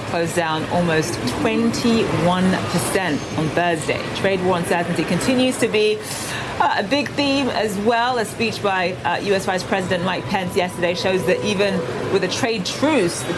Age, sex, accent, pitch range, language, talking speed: 30-49, female, British, 170-210 Hz, English, 155 wpm